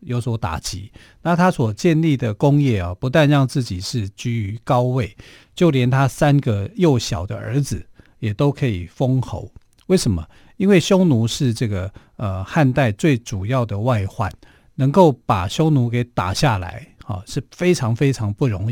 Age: 50-69